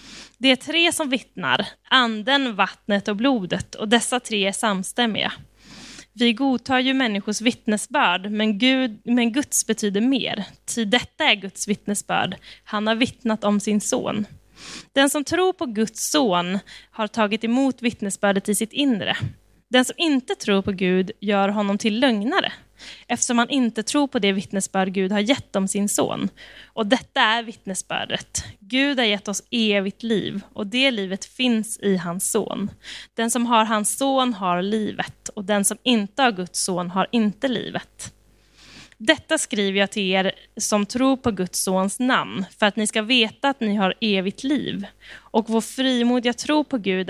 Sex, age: female, 10-29